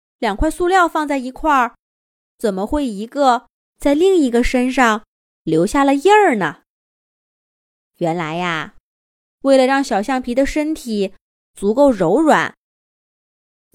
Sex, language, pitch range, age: female, Chinese, 205-295 Hz, 20-39